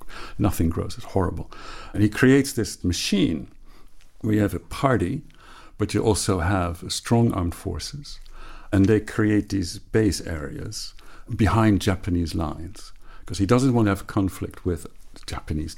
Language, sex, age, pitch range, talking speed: English, male, 60-79, 90-110 Hz, 150 wpm